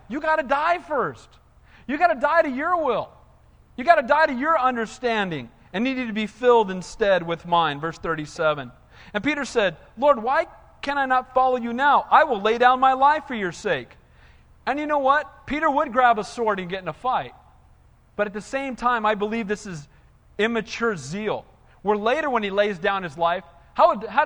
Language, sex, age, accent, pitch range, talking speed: English, male, 40-59, American, 155-225 Hz, 210 wpm